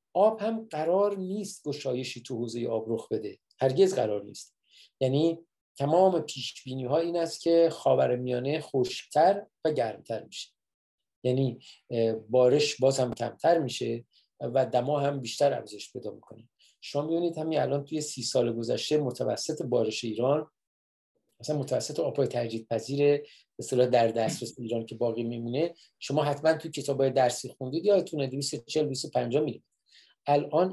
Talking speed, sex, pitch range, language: 145 wpm, male, 120-155 Hz, Persian